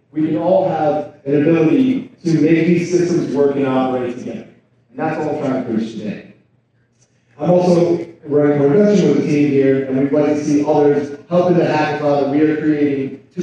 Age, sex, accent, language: 30-49, male, American, English